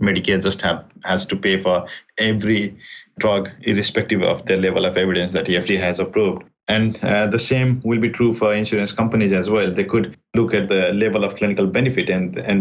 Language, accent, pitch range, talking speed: English, Indian, 100-125 Hz, 200 wpm